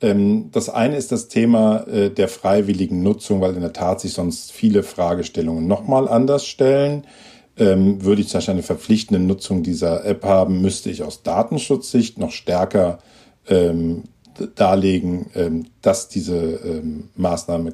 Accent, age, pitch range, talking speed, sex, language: German, 50-69, 95-130 Hz, 130 wpm, male, German